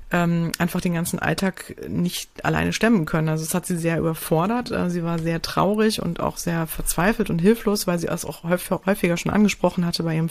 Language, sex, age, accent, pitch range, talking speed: German, female, 30-49, German, 165-185 Hz, 200 wpm